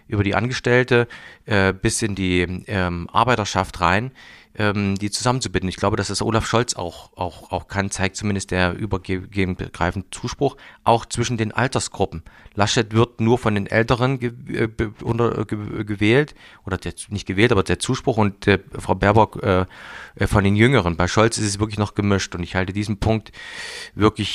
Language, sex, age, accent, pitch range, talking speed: German, male, 40-59, German, 95-110 Hz, 175 wpm